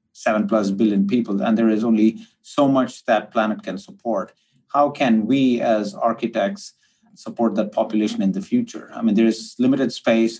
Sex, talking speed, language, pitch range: male, 180 wpm, English, 110-130 Hz